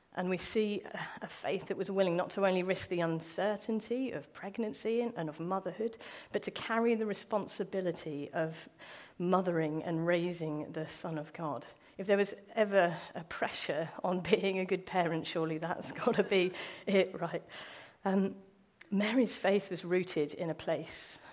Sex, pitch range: female, 155-195 Hz